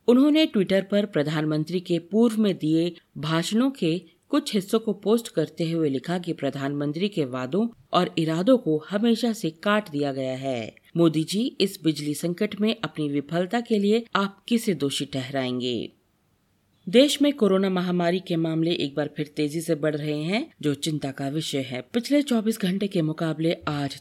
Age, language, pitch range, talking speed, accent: 40-59, Hindi, 150-205 Hz, 170 wpm, native